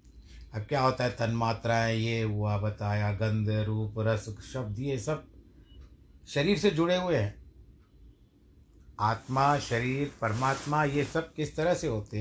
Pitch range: 100-135 Hz